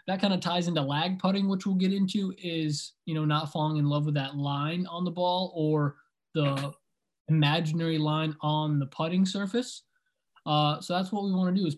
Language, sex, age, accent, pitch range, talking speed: English, male, 20-39, American, 150-180 Hz, 210 wpm